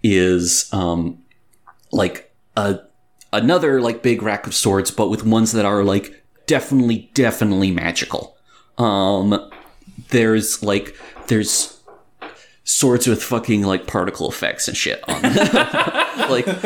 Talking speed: 125 wpm